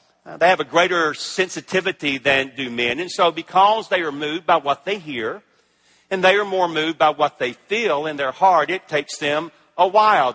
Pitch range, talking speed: 145-185 Hz, 210 wpm